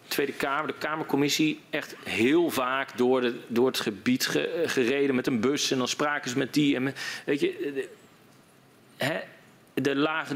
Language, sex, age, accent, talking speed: Dutch, male, 40-59, Dutch, 155 wpm